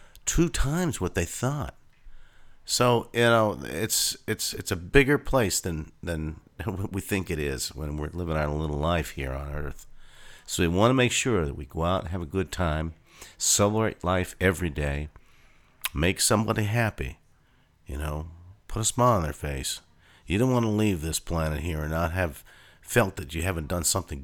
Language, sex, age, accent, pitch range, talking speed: English, male, 50-69, American, 80-105 Hz, 190 wpm